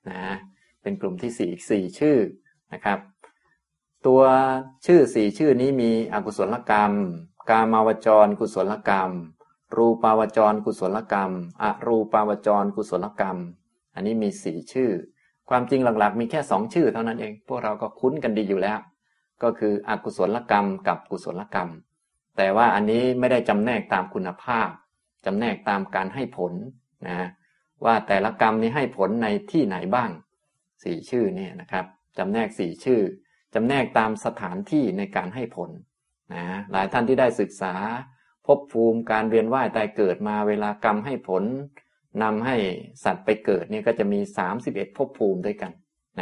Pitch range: 100-125 Hz